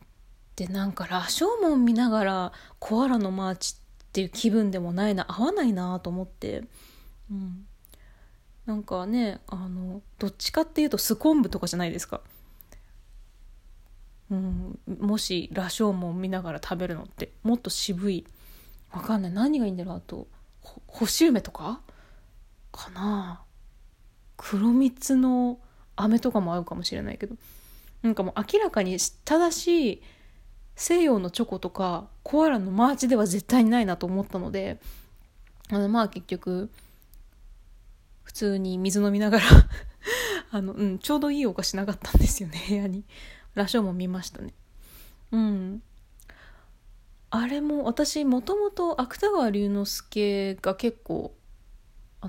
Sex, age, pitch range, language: female, 20-39, 185-245 Hz, Japanese